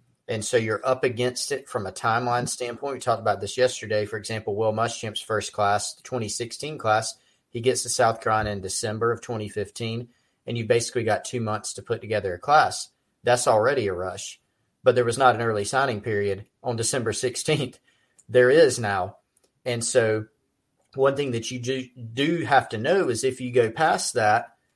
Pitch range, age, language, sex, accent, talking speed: 105-125 Hz, 40-59, English, male, American, 190 wpm